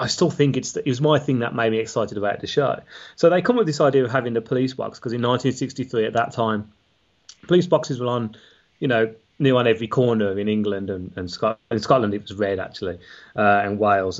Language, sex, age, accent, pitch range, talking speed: English, male, 30-49, British, 105-150 Hz, 235 wpm